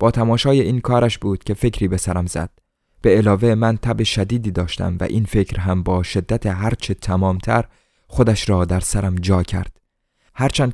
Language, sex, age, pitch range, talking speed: Persian, male, 20-39, 100-125 Hz, 175 wpm